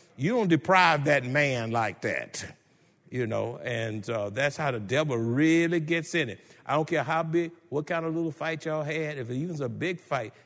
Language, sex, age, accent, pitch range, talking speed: English, male, 60-79, American, 135-230 Hz, 210 wpm